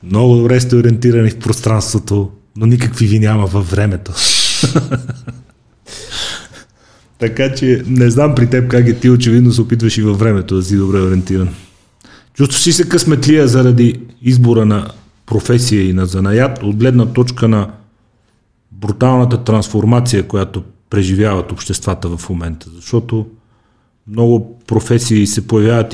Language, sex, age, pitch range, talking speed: Bulgarian, male, 30-49, 105-125 Hz, 135 wpm